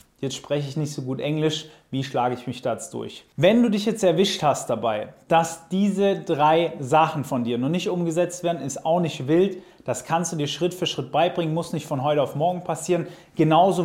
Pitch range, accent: 140-170 Hz, German